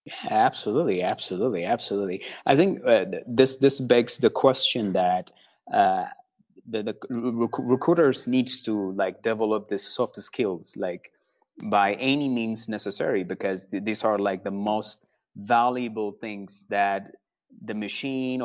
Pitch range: 100-120 Hz